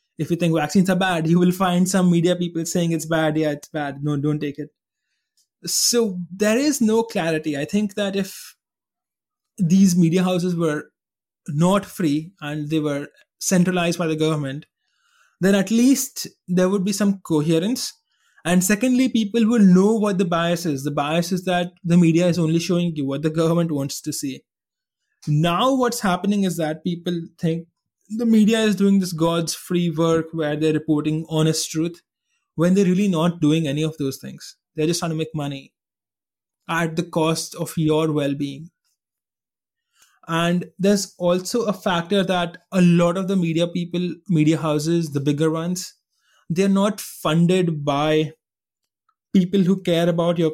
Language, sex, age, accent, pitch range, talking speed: English, male, 20-39, Indian, 160-195 Hz, 170 wpm